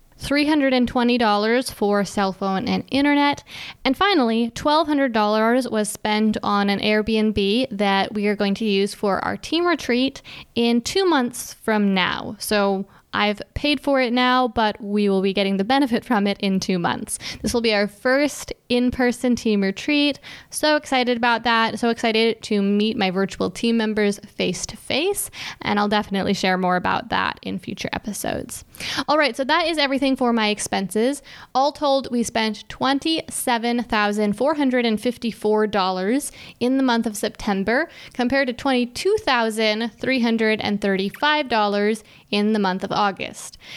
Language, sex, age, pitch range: English, female, 10-29, 205-260 Hz